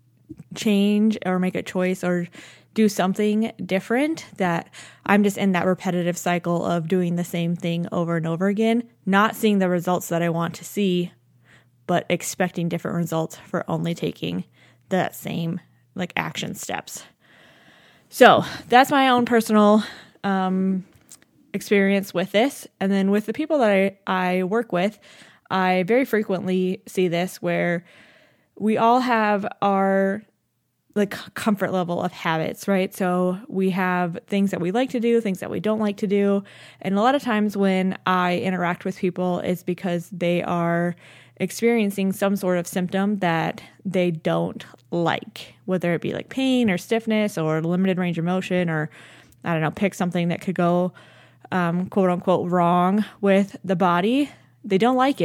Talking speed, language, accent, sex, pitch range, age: 165 wpm, English, American, female, 175-205 Hz, 20-39